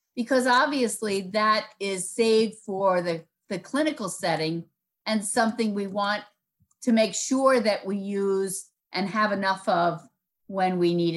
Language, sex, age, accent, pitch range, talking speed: English, female, 50-69, American, 185-240 Hz, 145 wpm